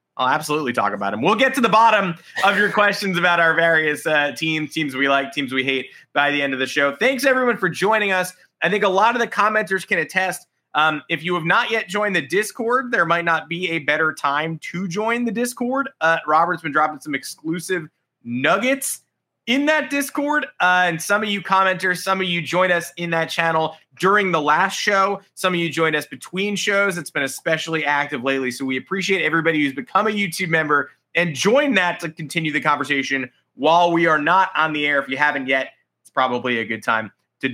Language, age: English, 20-39